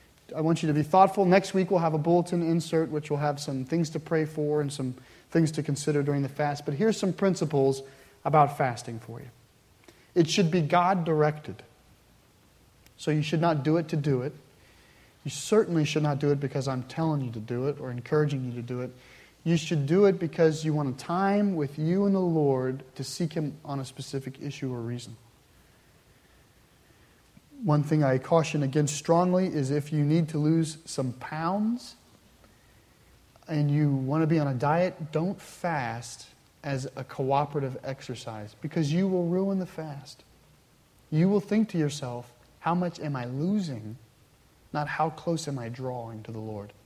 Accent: American